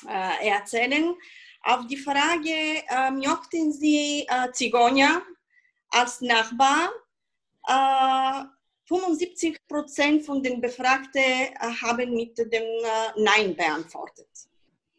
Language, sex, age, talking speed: German, female, 30-49, 95 wpm